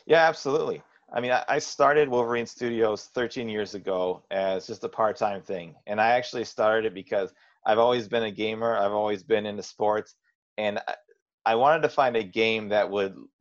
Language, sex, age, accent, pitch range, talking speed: English, male, 30-49, American, 100-115 Hz, 185 wpm